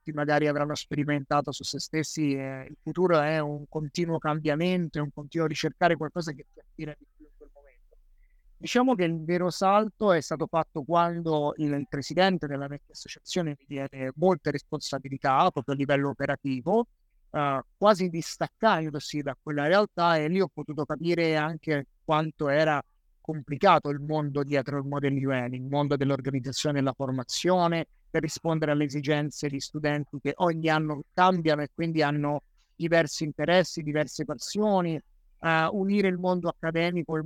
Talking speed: 160 wpm